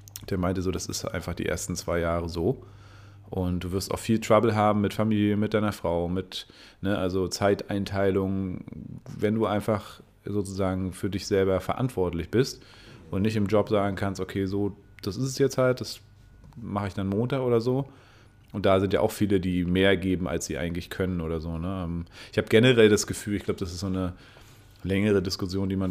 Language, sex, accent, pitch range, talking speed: German, male, German, 95-110 Hz, 200 wpm